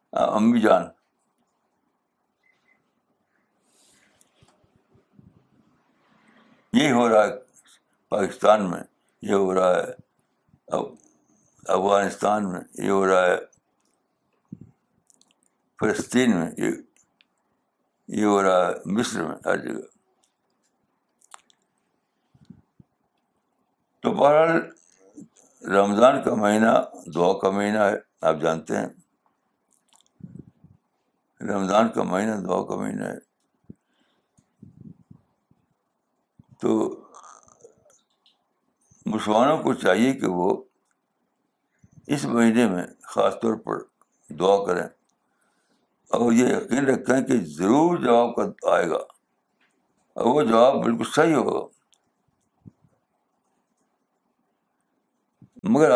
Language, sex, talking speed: Urdu, male, 80 wpm